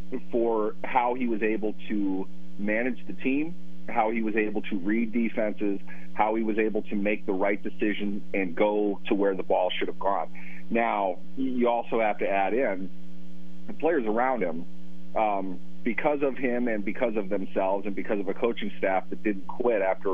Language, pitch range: English, 90-115 Hz